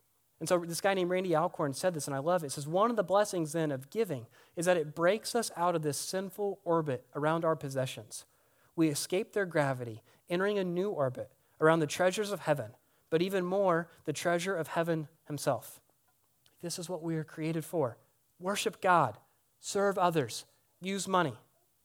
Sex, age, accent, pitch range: male, 30-49, American, 145-195 Hz